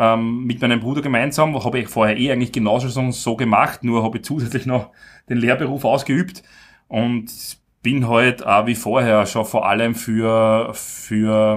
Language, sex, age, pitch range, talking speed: German, male, 30-49, 110-125 Hz, 165 wpm